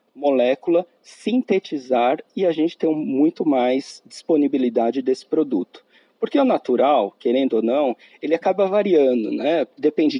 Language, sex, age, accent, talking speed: Portuguese, male, 40-59, Brazilian, 130 wpm